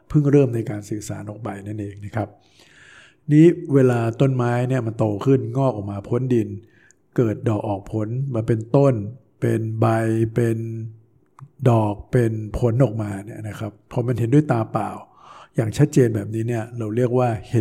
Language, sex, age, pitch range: Thai, male, 60-79, 105-125 Hz